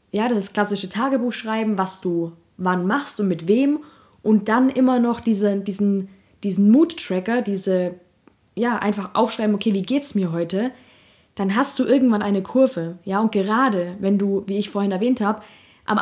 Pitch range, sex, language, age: 190-230 Hz, female, German, 20-39